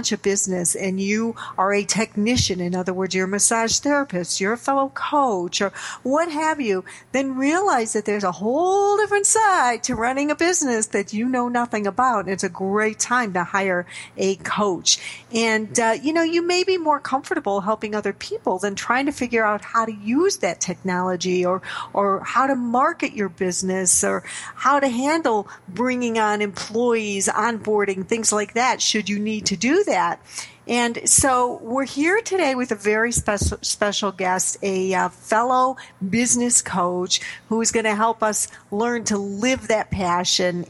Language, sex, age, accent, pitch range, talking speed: English, female, 50-69, American, 195-255 Hz, 175 wpm